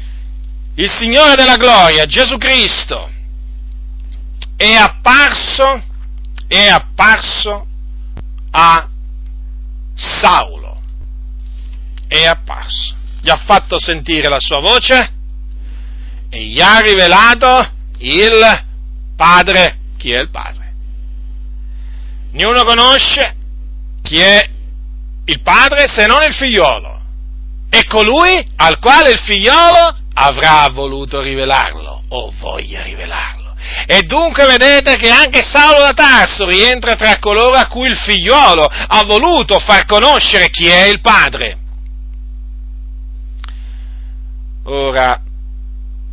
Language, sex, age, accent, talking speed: Italian, male, 50-69, native, 100 wpm